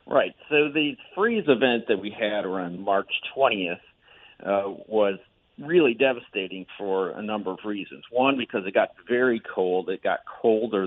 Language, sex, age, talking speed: English, male, 50-69, 160 wpm